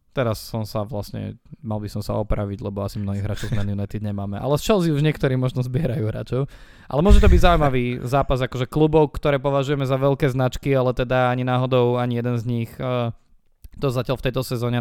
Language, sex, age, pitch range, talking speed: Slovak, male, 20-39, 105-135 Hz, 205 wpm